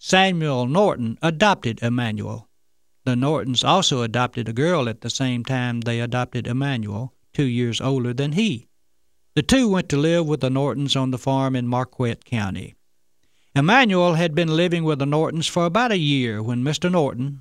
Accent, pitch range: American, 115-160 Hz